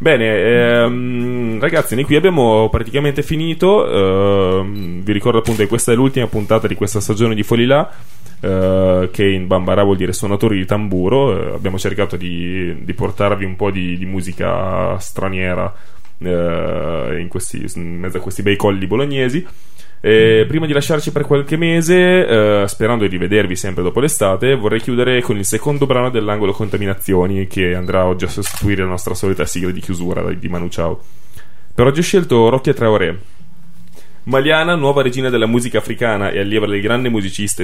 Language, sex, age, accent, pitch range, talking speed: Italian, male, 10-29, native, 95-125 Hz, 160 wpm